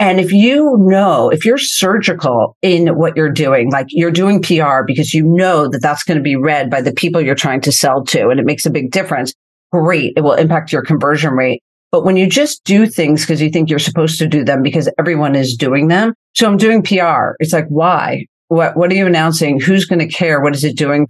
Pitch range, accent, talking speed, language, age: 145-180 Hz, American, 240 wpm, English, 50-69